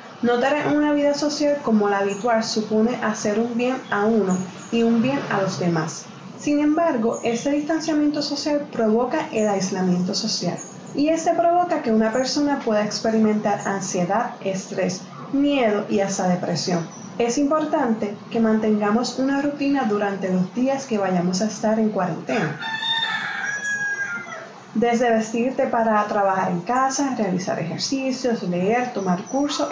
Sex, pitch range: female, 200-270 Hz